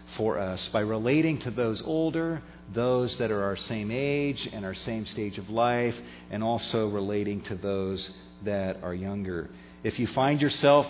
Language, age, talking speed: English, 40-59, 170 wpm